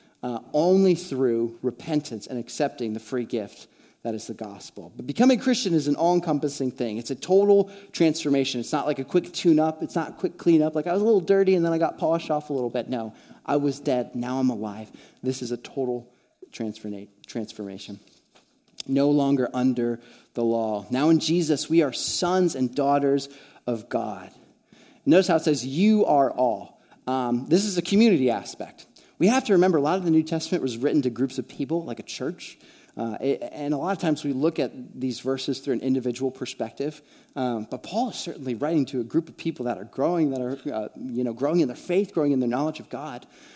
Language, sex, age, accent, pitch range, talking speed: English, male, 30-49, American, 120-165 Hz, 210 wpm